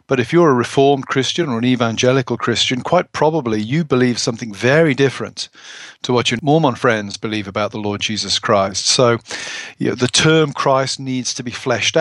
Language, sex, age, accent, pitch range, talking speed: English, male, 40-59, British, 120-140 Hz, 180 wpm